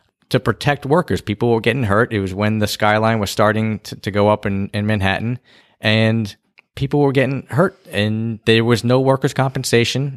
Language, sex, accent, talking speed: English, male, American, 190 wpm